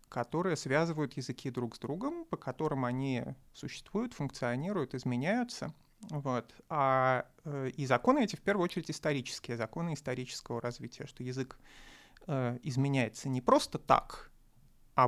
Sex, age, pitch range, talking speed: male, 30-49, 130-165 Hz, 120 wpm